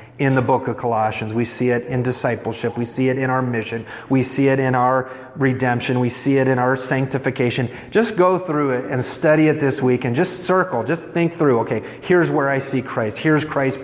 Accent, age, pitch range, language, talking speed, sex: American, 30-49, 125-160 Hz, English, 220 wpm, male